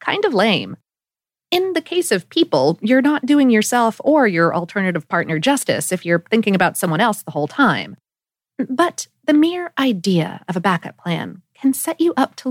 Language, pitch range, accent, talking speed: English, 175-270 Hz, American, 185 wpm